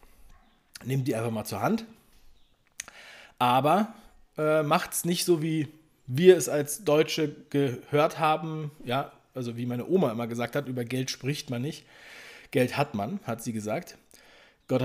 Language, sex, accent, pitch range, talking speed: German, male, German, 120-155 Hz, 160 wpm